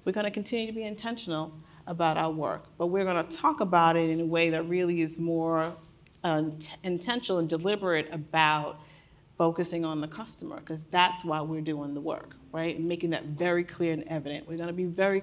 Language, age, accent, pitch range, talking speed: English, 40-59, American, 160-175 Hz, 205 wpm